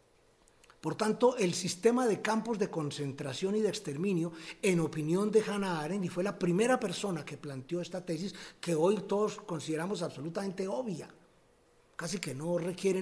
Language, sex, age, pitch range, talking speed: Spanish, male, 50-69, 160-205 Hz, 160 wpm